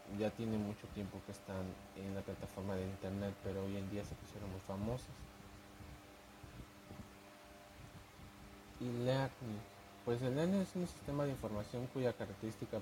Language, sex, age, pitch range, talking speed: Spanish, male, 30-49, 100-125 Hz, 140 wpm